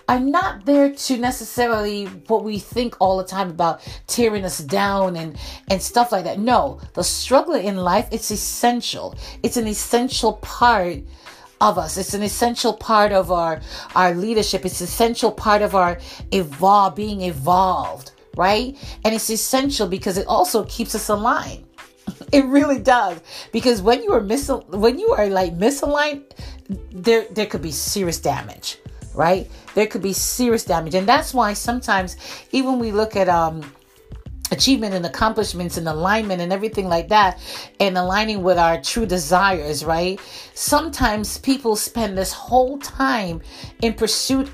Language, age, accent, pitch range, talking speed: English, 40-59, American, 190-245 Hz, 160 wpm